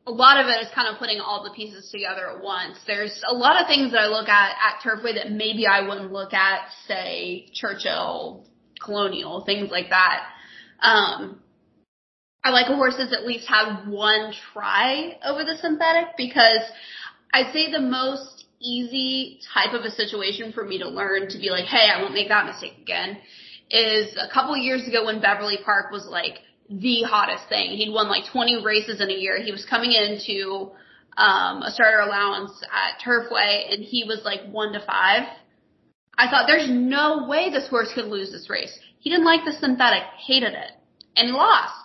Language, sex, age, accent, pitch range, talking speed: English, female, 20-39, American, 205-255 Hz, 190 wpm